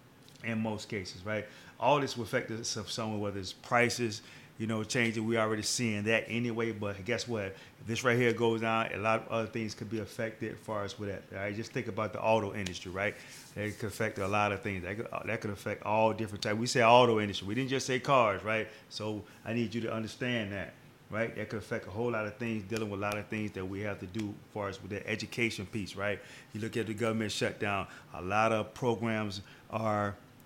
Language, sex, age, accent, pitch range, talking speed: English, male, 30-49, American, 105-125 Hz, 235 wpm